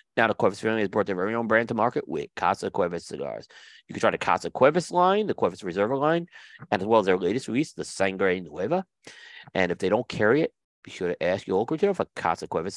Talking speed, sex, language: 250 wpm, male, English